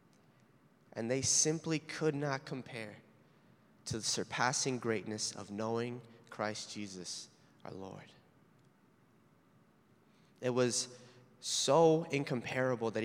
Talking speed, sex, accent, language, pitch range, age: 95 wpm, male, American, English, 120-155 Hz, 20-39